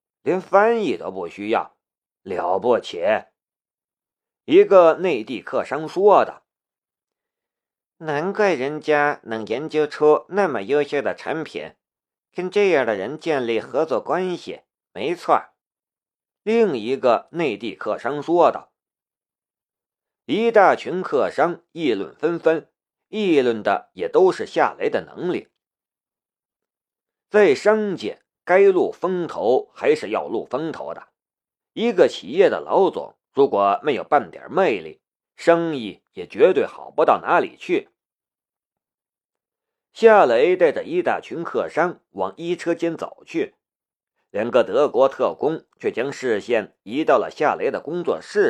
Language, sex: Chinese, male